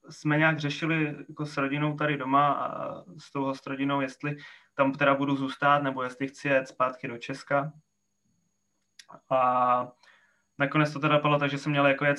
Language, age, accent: Czech, 20-39, native